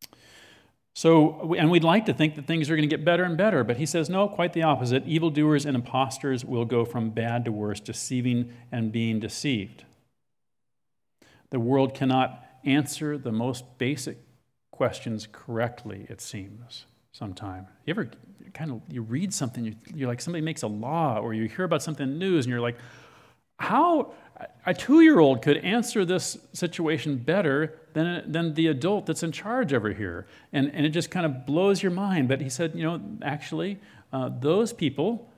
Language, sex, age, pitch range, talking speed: English, male, 50-69, 120-165 Hz, 180 wpm